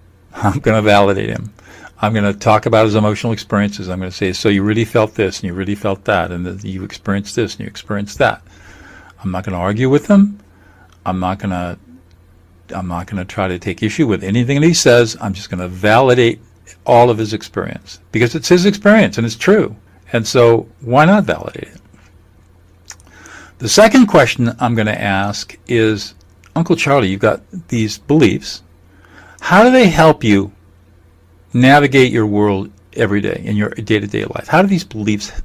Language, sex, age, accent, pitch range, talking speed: English, male, 50-69, American, 95-120 Hz, 185 wpm